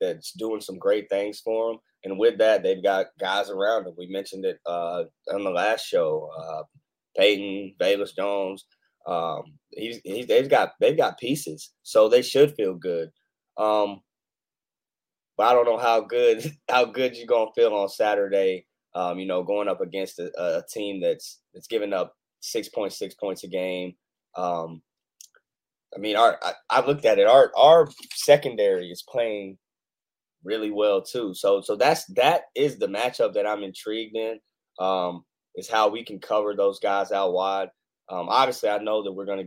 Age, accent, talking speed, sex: 20-39, American, 180 wpm, male